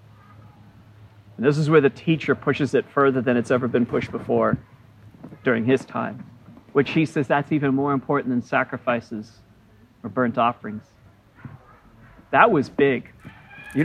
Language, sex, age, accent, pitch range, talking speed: English, male, 40-59, American, 120-175 Hz, 145 wpm